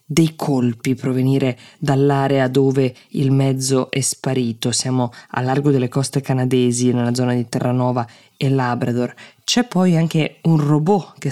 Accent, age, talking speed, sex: native, 20-39, 145 wpm, female